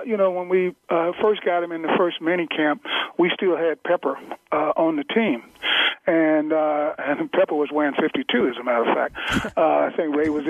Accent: American